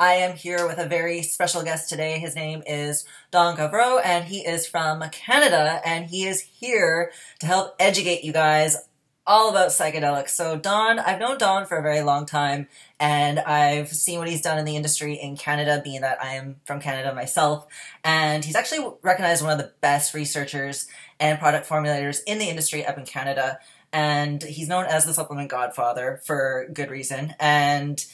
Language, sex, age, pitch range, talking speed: English, female, 20-39, 145-175 Hz, 190 wpm